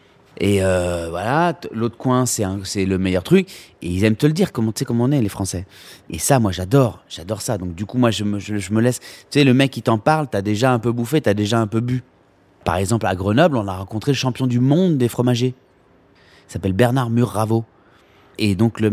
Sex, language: male, French